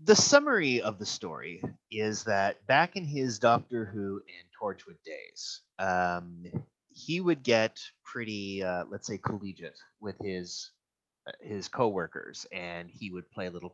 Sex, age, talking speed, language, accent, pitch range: male, 30-49, 150 wpm, English, American, 95-140 Hz